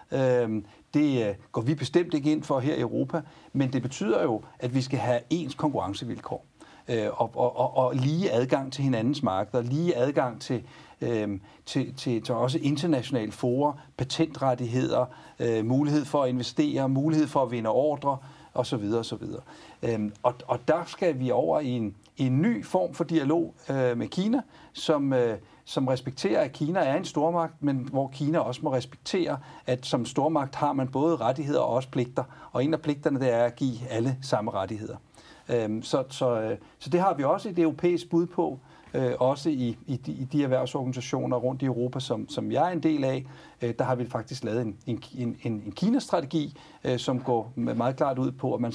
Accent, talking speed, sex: native, 175 wpm, male